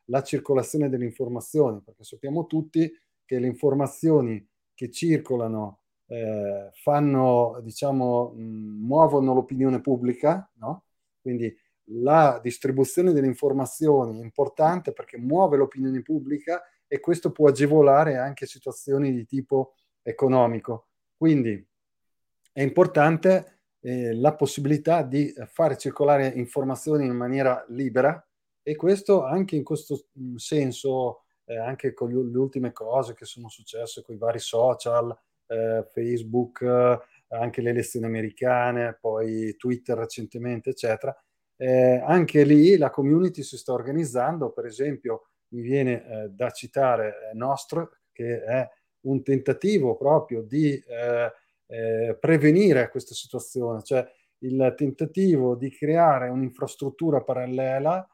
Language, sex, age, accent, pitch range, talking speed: Italian, male, 30-49, native, 120-150 Hz, 120 wpm